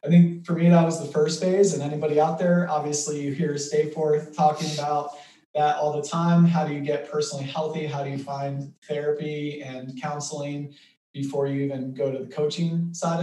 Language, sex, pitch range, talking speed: English, male, 135-165 Hz, 200 wpm